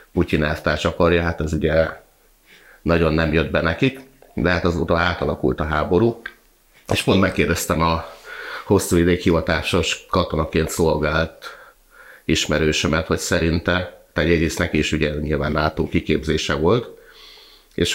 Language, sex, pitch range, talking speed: Hungarian, male, 75-90 Hz, 125 wpm